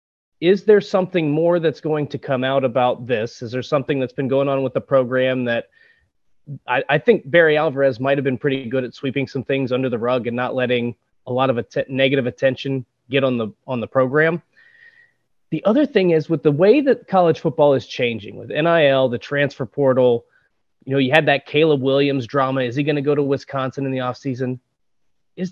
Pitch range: 130-160 Hz